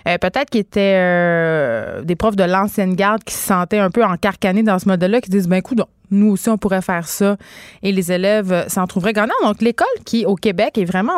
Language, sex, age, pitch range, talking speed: French, female, 20-39, 185-225 Hz, 245 wpm